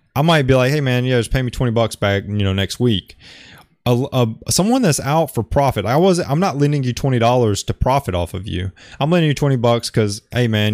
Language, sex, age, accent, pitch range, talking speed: English, male, 20-39, American, 110-145 Hz, 265 wpm